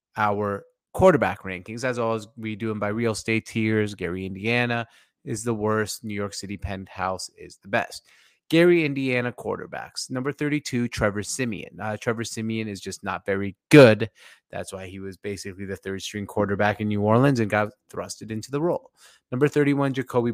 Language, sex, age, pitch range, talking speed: English, male, 30-49, 100-120 Hz, 175 wpm